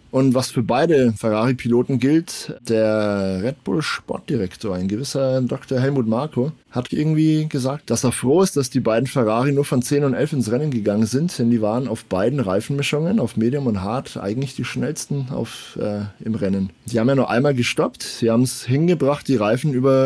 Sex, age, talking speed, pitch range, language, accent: male, 20-39, 195 wpm, 115-140 Hz, German, German